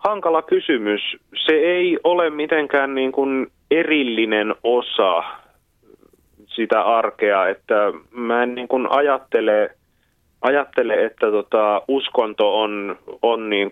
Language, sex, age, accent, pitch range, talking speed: Finnish, male, 30-49, native, 105-145 Hz, 110 wpm